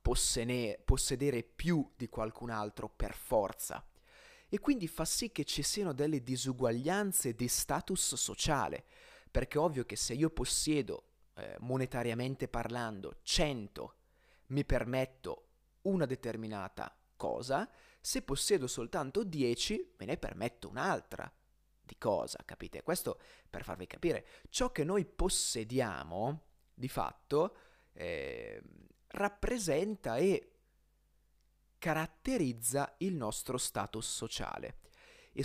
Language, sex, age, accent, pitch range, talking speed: Italian, male, 30-49, native, 125-195 Hz, 110 wpm